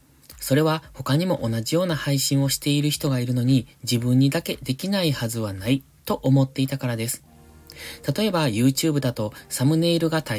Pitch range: 110-145 Hz